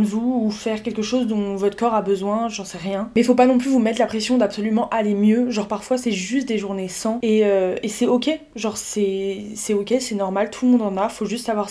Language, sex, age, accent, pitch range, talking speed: French, female, 20-39, French, 205-245 Hz, 265 wpm